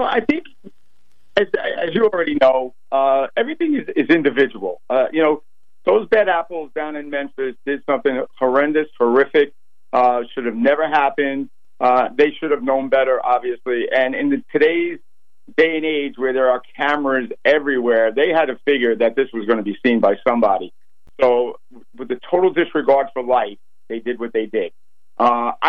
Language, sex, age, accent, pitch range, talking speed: English, male, 50-69, American, 125-160 Hz, 175 wpm